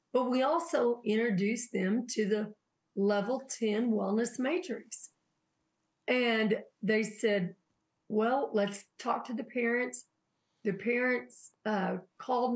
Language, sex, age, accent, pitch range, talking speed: English, female, 50-69, American, 205-250 Hz, 115 wpm